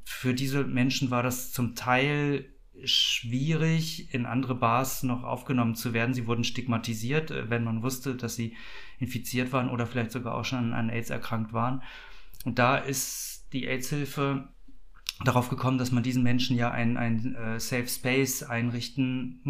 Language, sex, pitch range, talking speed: German, male, 115-130 Hz, 160 wpm